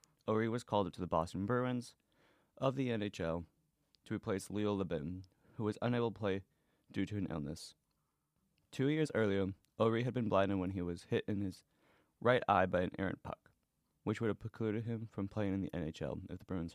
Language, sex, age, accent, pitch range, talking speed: English, male, 20-39, American, 95-115 Hz, 200 wpm